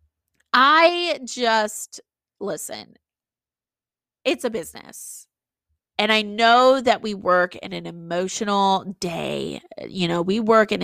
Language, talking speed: English, 115 wpm